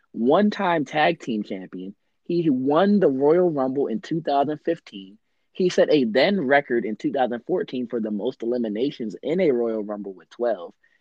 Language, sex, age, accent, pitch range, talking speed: English, male, 20-39, American, 105-140 Hz, 155 wpm